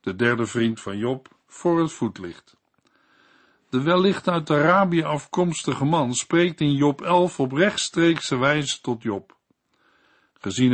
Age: 60-79